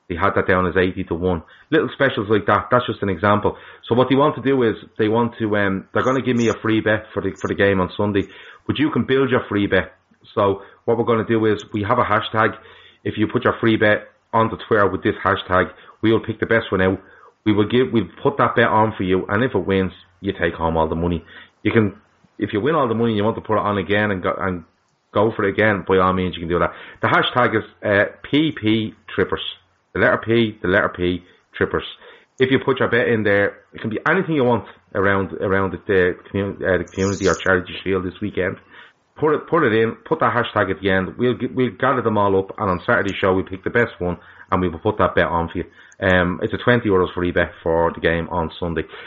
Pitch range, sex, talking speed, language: 90-110 Hz, male, 265 wpm, English